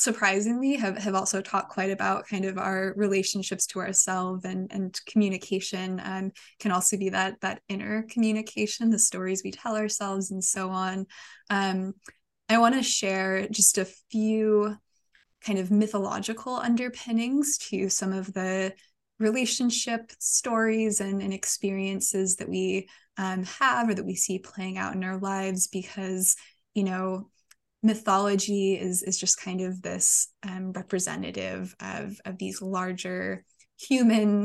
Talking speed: 145 wpm